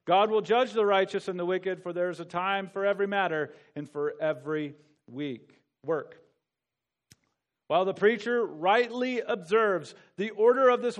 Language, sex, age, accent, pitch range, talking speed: English, male, 40-59, American, 165-240 Hz, 160 wpm